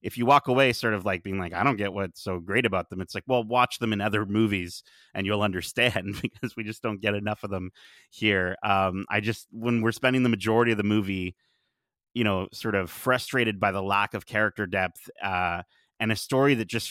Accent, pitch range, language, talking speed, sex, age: American, 95-115 Hz, English, 230 wpm, male, 30-49